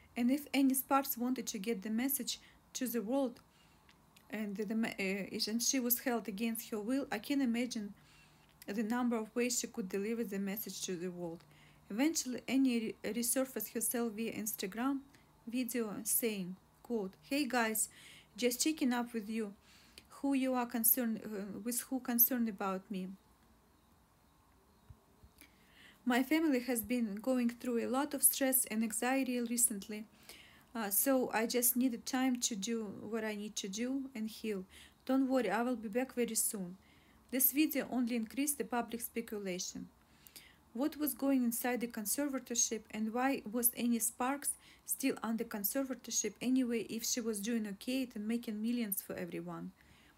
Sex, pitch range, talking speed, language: female, 215-255 Hz, 160 wpm, English